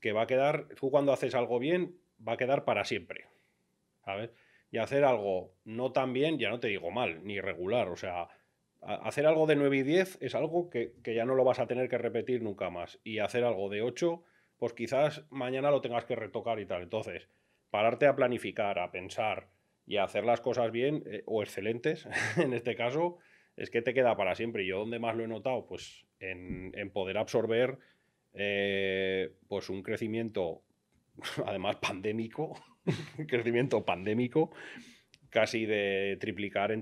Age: 30-49